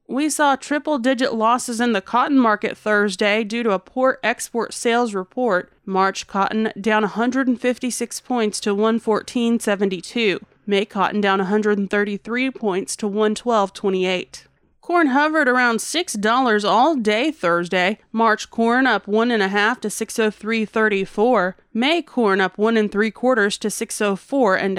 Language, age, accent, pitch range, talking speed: English, 30-49, American, 205-255 Hz, 135 wpm